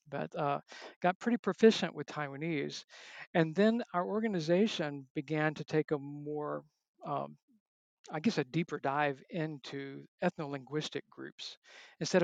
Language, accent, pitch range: English, American, 140-180 Hz